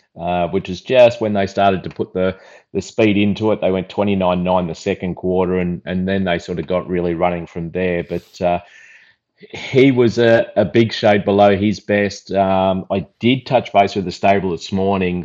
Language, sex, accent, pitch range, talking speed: English, male, Australian, 90-100 Hz, 205 wpm